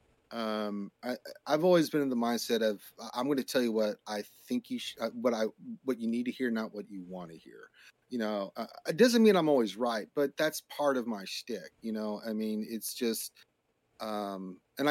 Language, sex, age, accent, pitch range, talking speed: English, male, 30-49, American, 115-170 Hz, 220 wpm